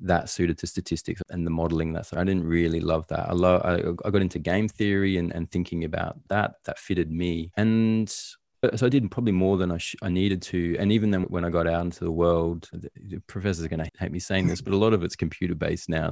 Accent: Australian